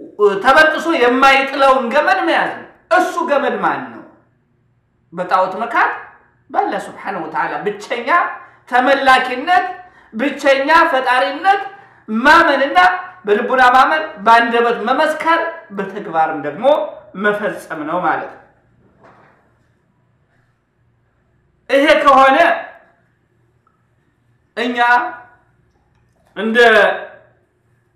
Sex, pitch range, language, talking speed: male, 225-290 Hz, Amharic, 75 wpm